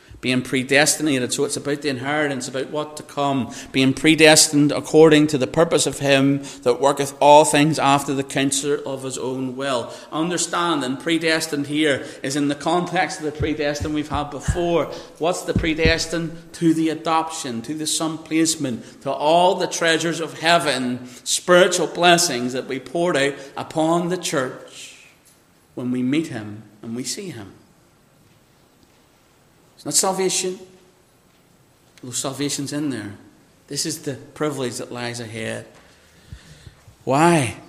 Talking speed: 145 wpm